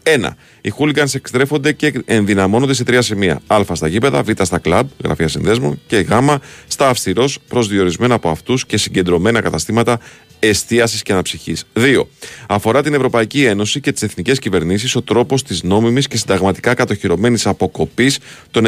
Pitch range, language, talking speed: 95-130 Hz, Greek, 150 wpm